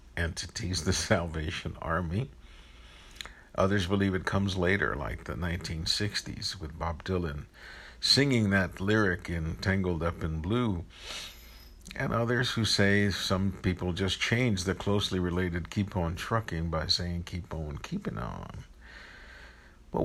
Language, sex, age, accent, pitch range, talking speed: English, male, 60-79, American, 85-105 Hz, 130 wpm